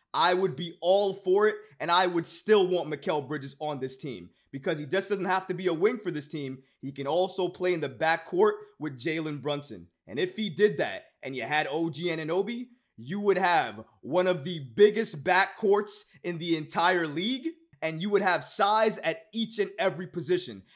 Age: 20-39